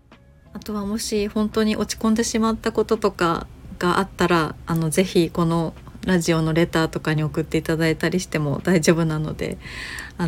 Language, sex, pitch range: Japanese, female, 155-210 Hz